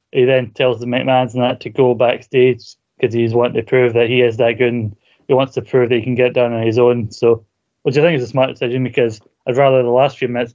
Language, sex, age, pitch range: English, male, 20-39, 120-130 Hz